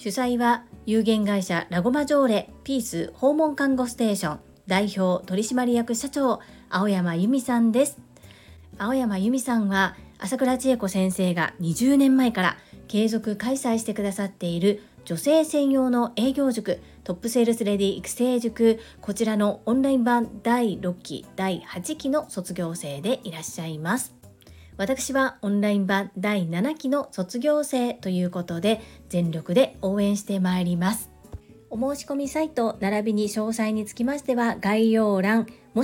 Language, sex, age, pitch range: Japanese, female, 40-59, 190-250 Hz